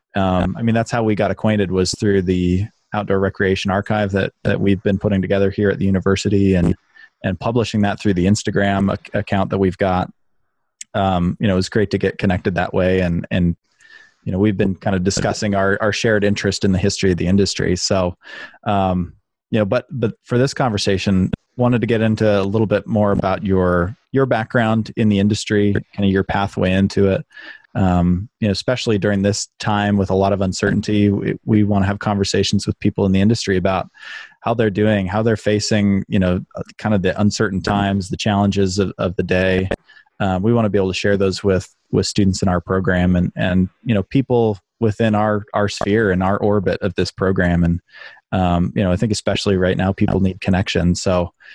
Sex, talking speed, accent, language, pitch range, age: male, 215 wpm, American, English, 95-105 Hz, 20-39